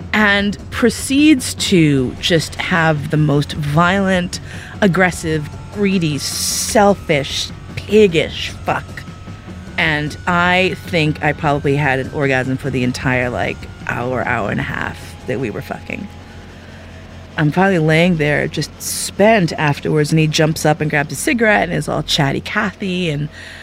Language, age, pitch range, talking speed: English, 30-49, 145-185 Hz, 140 wpm